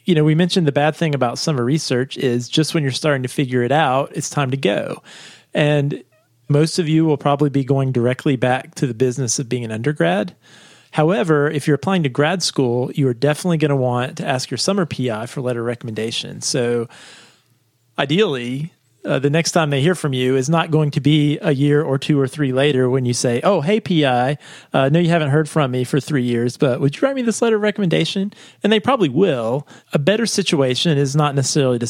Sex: male